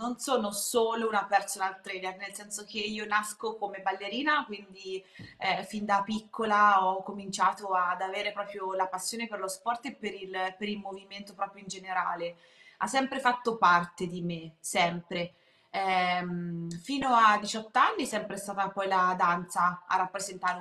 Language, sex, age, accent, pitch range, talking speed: Italian, female, 20-39, native, 175-205 Hz, 165 wpm